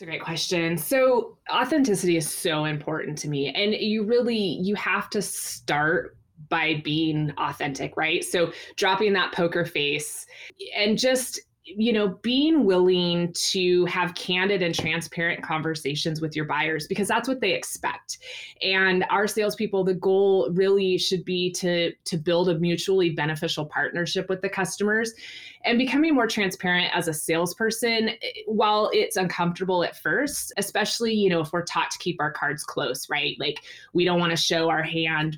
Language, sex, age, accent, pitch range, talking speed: English, female, 20-39, American, 165-215 Hz, 165 wpm